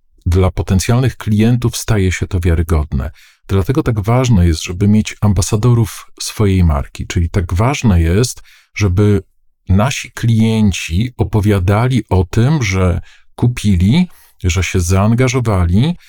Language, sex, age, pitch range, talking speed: Polish, male, 50-69, 95-115 Hz, 115 wpm